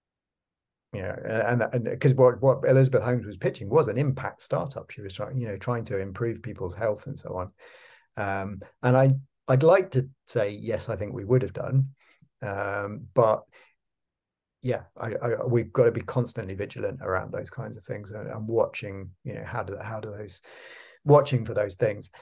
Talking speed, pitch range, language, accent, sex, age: 190 wpm, 105-130 Hz, English, British, male, 40-59